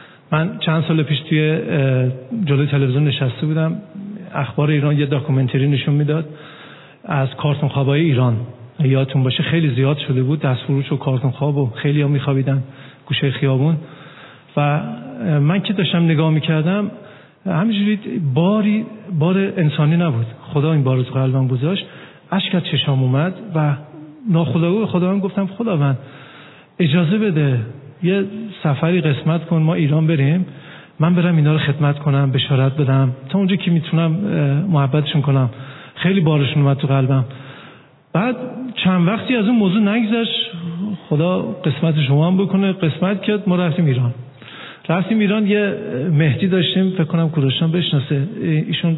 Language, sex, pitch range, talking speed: Persian, male, 140-180 Hz, 145 wpm